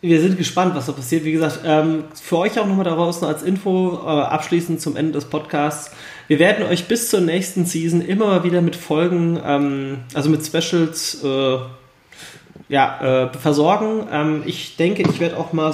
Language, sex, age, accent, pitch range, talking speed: German, male, 30-49, German, 145-175 Hz, 190 wpm